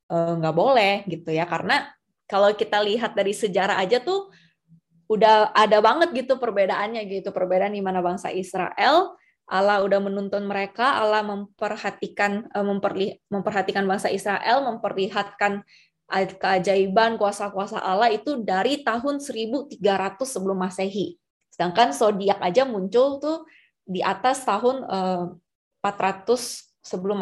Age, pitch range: 20-39, 185-225 Hz